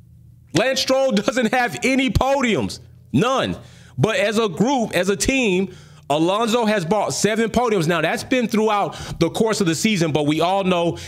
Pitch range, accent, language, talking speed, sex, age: 170-220 Hz, American, English, 175 wpm, male, 30-49